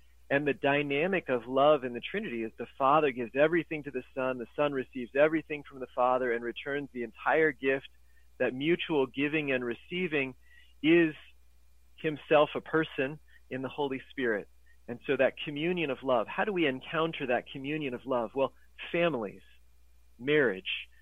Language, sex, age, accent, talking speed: English, male, 40-59, American, 165 wpm